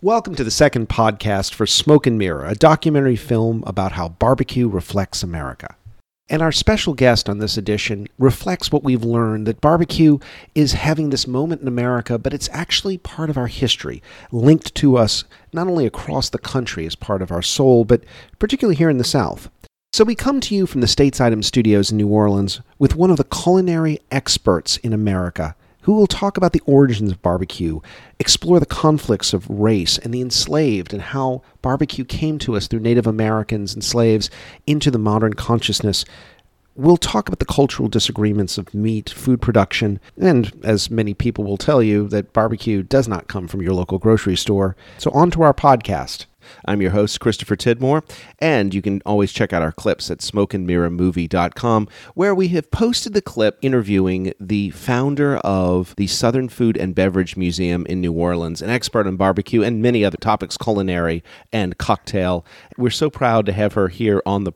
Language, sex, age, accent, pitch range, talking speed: English, male, 40-59, American, 100-135 Hz, 185 wpm